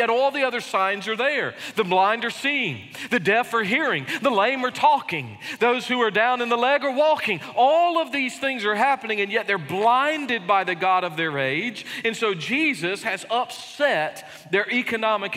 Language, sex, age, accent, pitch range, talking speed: English, male, 40-59, American, 140-215 Hz, 195 wpm